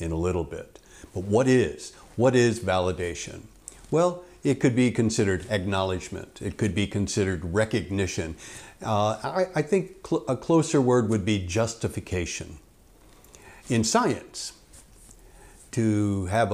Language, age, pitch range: English, 60-79, 95-115 Hz